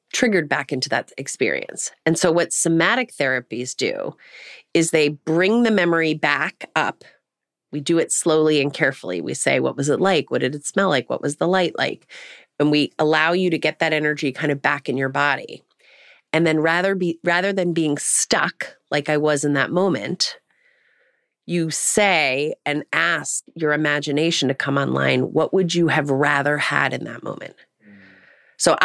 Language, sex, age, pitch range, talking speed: English, female, 30-49, 140-175 Hz, 180 wpm